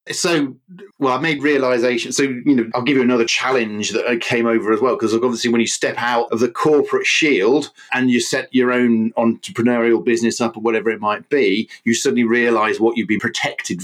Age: 40-59